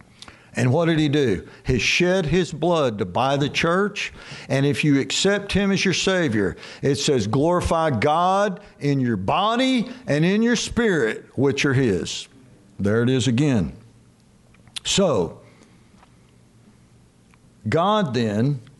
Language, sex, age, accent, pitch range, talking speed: English, male, 60-79, American, 115-165 Hz, 135 wpm